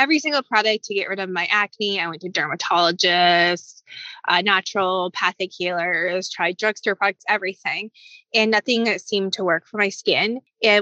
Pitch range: 195-235 Hz